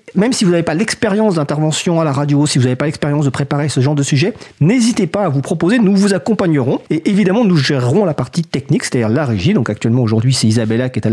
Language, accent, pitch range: French, French, 135-200 Hz